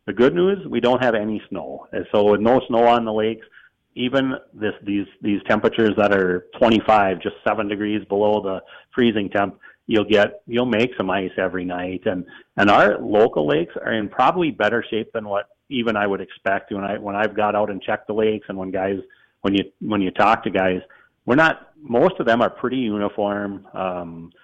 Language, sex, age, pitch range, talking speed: English, male, 40-59, 95-110 Hz, 205 wpm